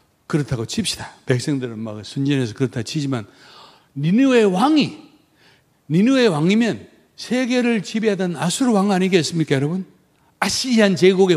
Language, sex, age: Korean, male, 60-79